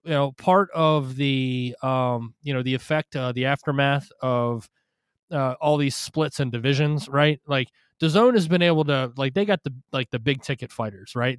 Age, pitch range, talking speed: 20-39, 130-160 Hz, 200 wpm